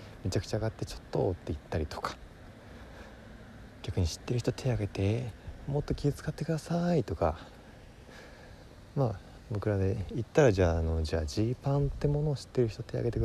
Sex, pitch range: male, 95-140 Hz